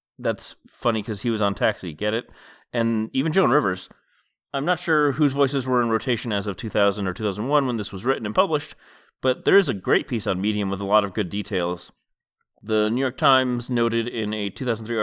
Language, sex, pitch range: English, male, 100-130 Hz